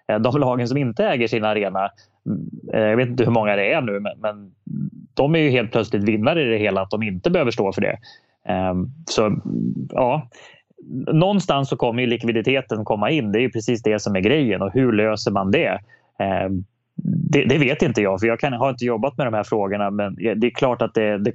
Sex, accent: male, Swedish